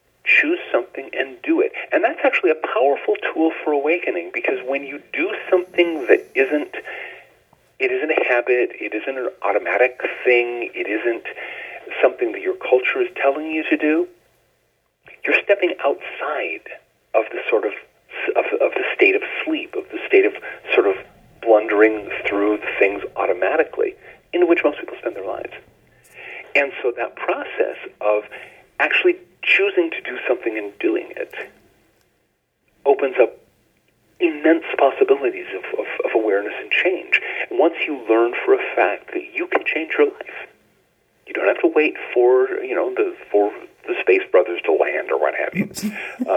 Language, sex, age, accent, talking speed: English, male, 40-59, American, 170 wpm